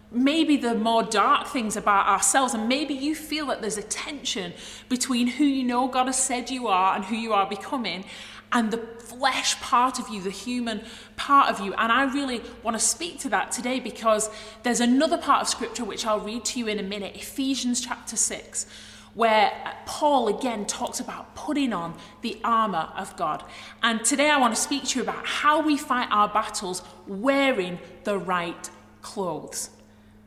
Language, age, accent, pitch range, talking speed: English, 30-49, British, 210-260 Hz, 190 wpm